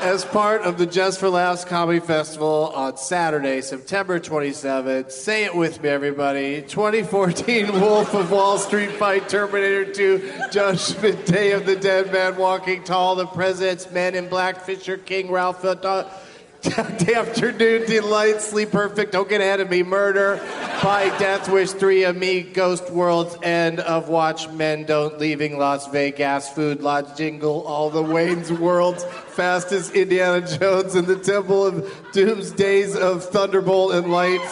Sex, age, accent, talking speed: male, 40-59, American, 155 wpm